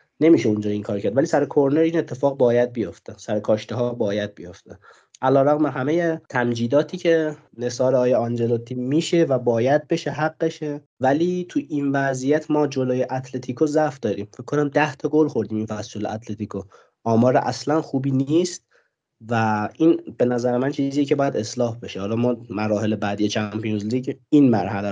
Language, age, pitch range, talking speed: Persian, 30-49, 115-140 Hz, 165 wpm